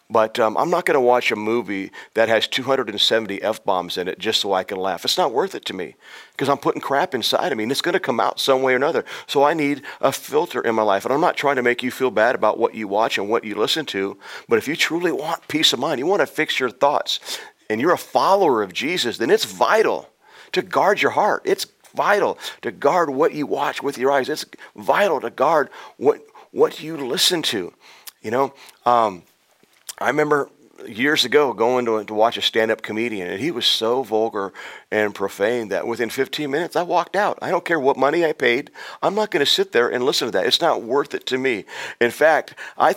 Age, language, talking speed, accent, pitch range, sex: 40-59, English, 230 wpm, American, 110-165 Hz, male